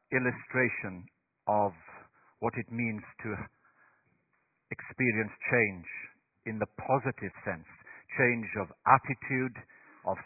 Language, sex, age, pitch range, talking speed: English, male, 60-79, 110-140 Hz, 95 wpm